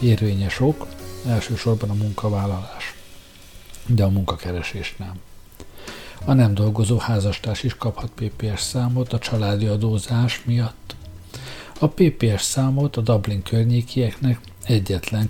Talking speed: 110 wpm